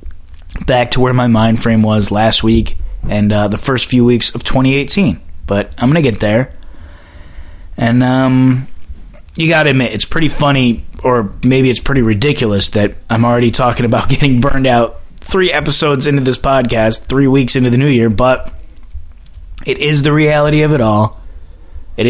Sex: male